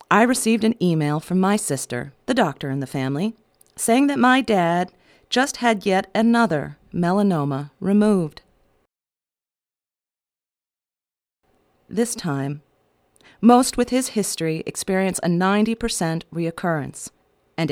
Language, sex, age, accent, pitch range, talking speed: English, female, 40-59, American, 165-210 Hz, 110 wpm